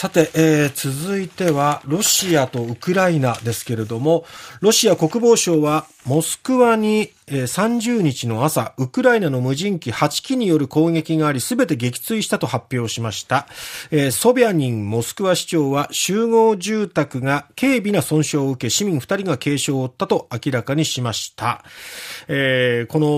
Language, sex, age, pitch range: Japanese, male, 40-59, 125-185 Hz